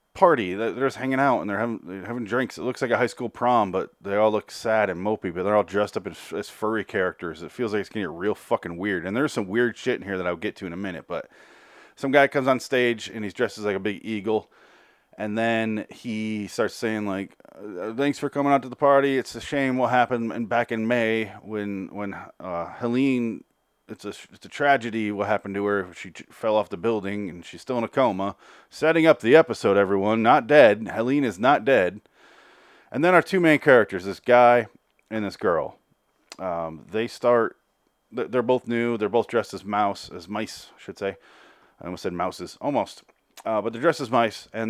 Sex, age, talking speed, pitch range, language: male, 30-49, 225 wpm, 100-120 Hz, English